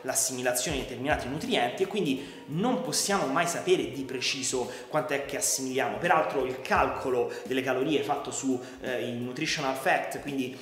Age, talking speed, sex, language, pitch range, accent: 30-49, 155 wpm, male, Italian, 130-160 Hz, native